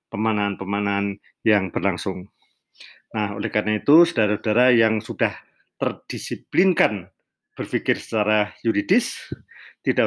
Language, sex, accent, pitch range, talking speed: Indonesian, male, native, 110-125 Hz, 90 wpm